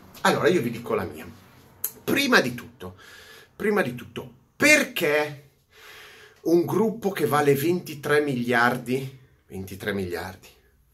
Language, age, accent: Italian, 30-49, native